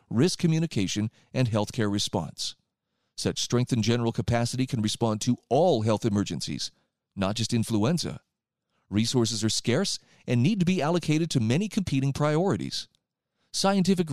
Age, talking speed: 40-59, 140 wpm